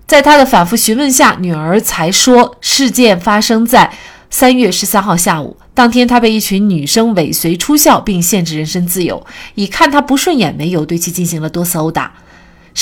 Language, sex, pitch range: Chinese, female, 175-245 Hz